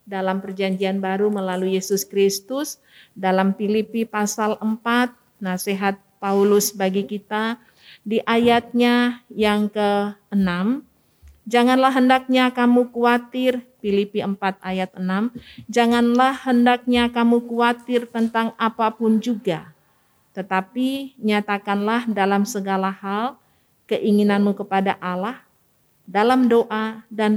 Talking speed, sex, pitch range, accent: 95 wpm, female, 195-235 Hz, native